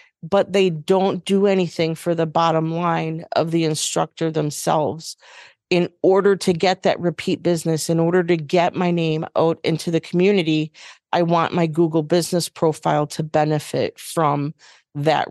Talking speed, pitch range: 155 wpm, 155-175 Hz